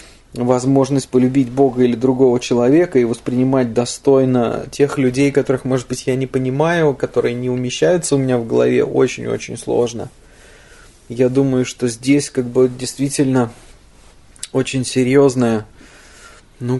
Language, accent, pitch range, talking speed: Russian, native, 115-130 Hz, 130 wpm